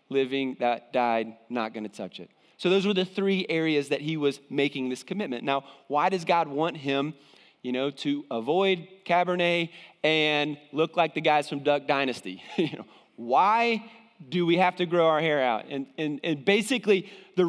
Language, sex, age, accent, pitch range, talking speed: English, male, 30-49, American, 155-210 Hz, 190 wpm